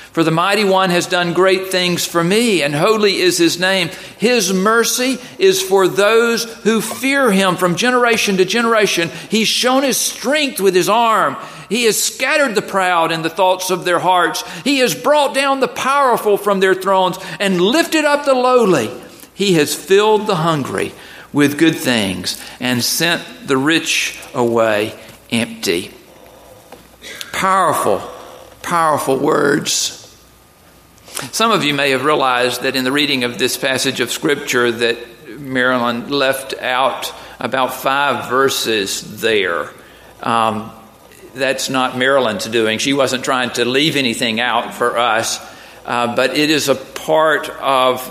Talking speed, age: 150 wpm, 50-69